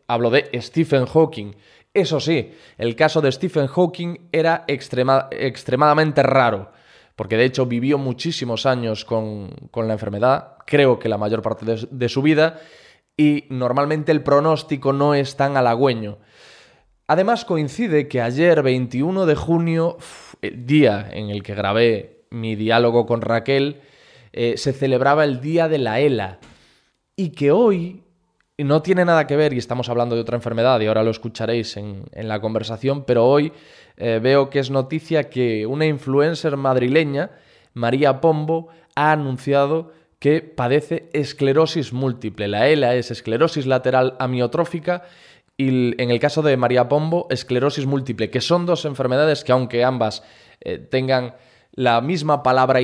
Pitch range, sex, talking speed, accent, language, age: 120-150 Hz, male, 150 wpm, Spanish, Spanish, 20-39